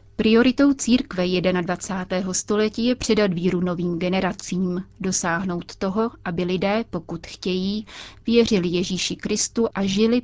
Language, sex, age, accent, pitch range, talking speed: Czech, female, 30-49, native, 180-210 Hz, 115 wpm